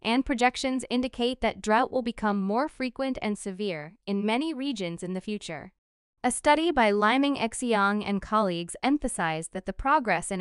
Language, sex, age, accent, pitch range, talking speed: English, female, 10-29, American, 195-255 Hz, 165 wpm